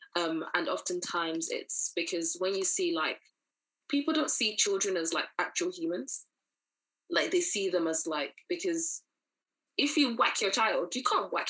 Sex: female